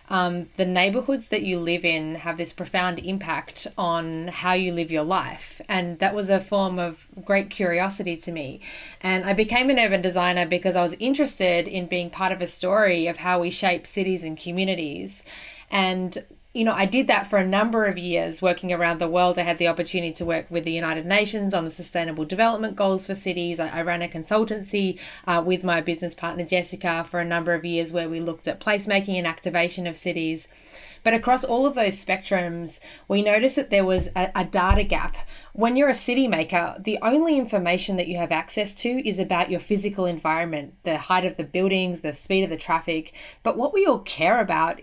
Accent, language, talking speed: Australian, English, 210 wpm